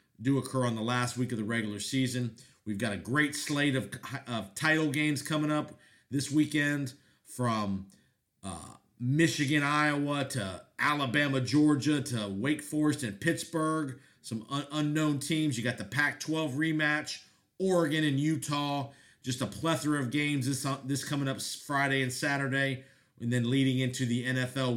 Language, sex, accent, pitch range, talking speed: English, male, American, 120-150 Hz, 155 wpm